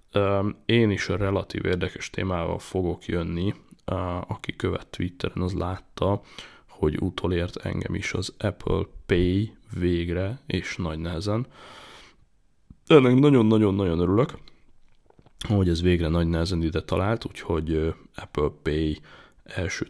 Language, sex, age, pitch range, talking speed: Hungarian, male, 20-39, 85-105 Hz, 115 wpm